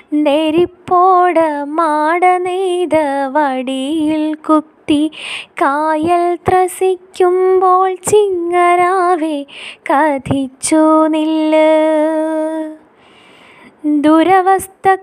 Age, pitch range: 20-39, 300-370 Hz